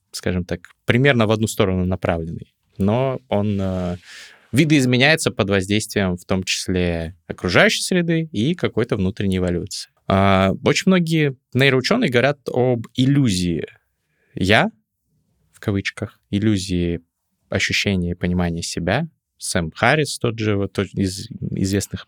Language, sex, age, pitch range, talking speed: Russian, male, 20-39, 90-120 Hz, 115 wpm